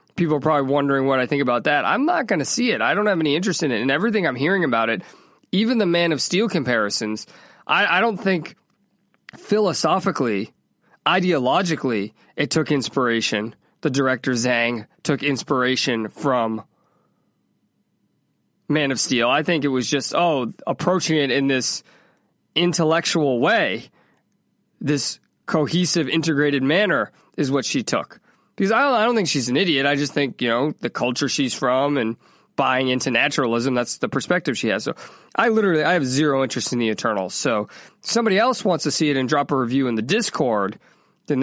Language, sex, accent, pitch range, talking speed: English, male, American, 130-175 Hz, 180 wpm